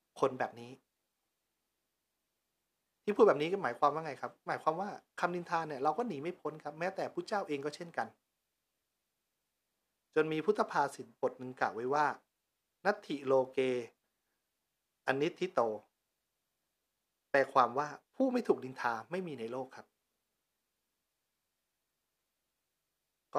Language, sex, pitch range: Thai, male, 120-155 Hz